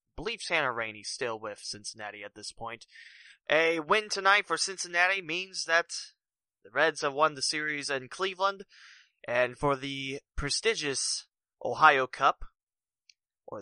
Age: 20-39